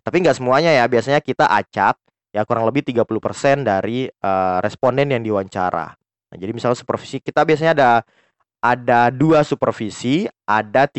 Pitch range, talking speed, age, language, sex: 105-145 Hz, 145 wpm, 20-39, Indonesian, male